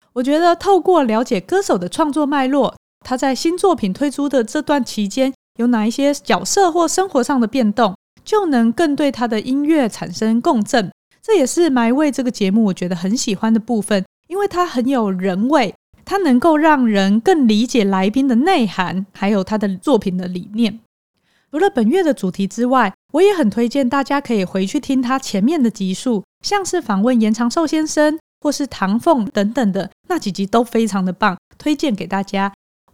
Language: Chinese